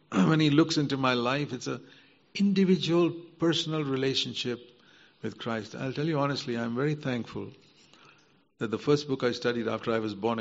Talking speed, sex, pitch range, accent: 175 wpm, male, 110-135 Hz, Indian